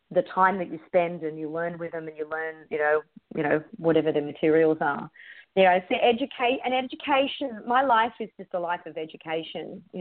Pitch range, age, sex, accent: 175-240 Hz, 30-49, female, Australian